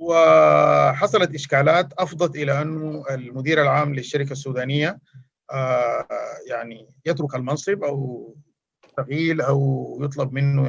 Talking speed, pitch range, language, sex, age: 95 wpm, 135-170 Hz, Arabic, male, 50-69